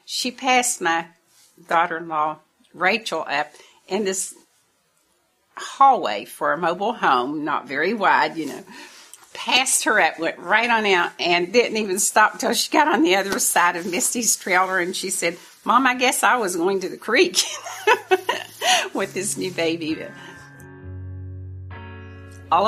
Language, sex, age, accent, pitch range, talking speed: English, female, 50-69, American, 160-240 Hz, 150 wpm